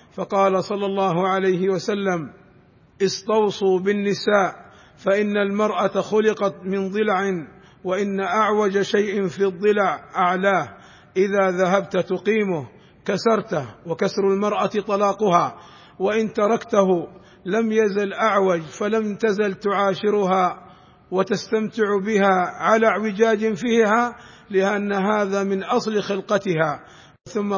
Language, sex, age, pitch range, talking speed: Arabic, male, 50-69, 190-215 Hz, 95 wpm